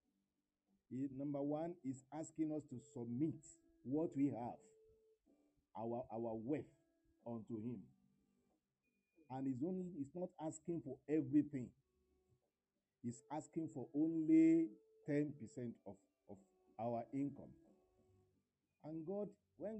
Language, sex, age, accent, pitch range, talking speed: English, male, 50-69, Nigerian, 120-170 Hz, 110 wpm